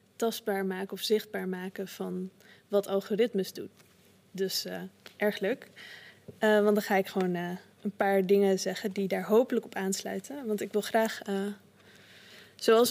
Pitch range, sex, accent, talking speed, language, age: 205-230 Hz, female, Dutch, 165 wpm, Dutch, 20-39